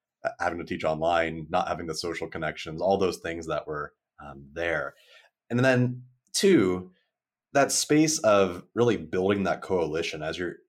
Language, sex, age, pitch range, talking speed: English, male, 30-49, 80-105 Hz, 155 wpm